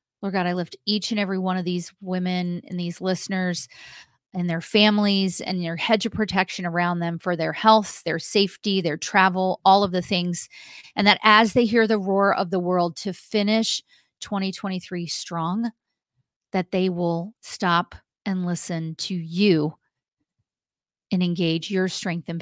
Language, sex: English, female